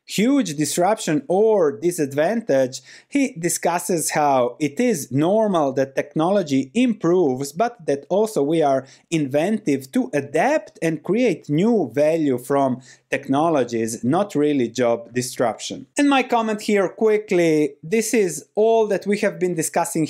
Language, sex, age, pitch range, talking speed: English, male, 30-49, 140-210 Hz, 130 wpm